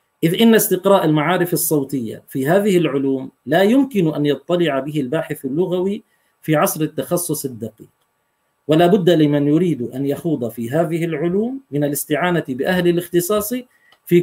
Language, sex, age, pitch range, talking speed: Arabic, male, 40-59, 150-205 Hz, 140 wpm